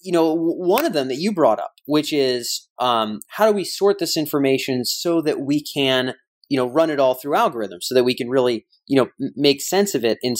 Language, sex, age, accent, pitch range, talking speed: English, male, 30-49, American, 130-160 Hz, 235 wpm